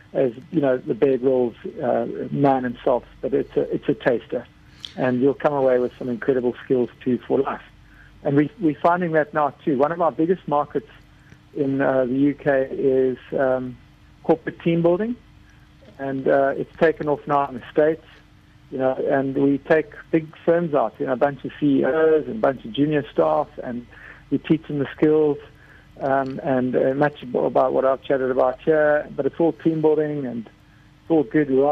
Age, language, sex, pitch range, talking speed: 50-69, English, male, 130-155 Hz, 190 wpm